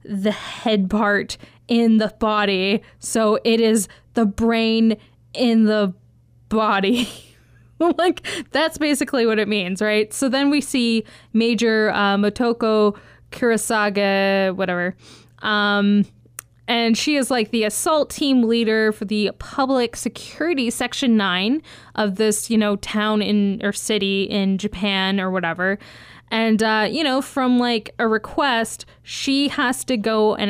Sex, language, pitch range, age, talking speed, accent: female, English, 195-240 Hz, 10-29, 140 wpm, American